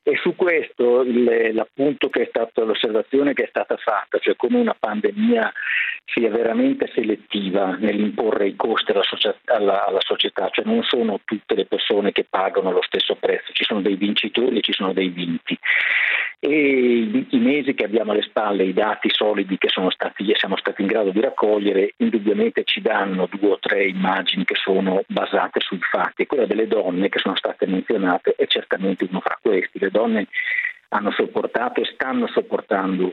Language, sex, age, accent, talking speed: Italian, male, 50-69, native, 170 wpm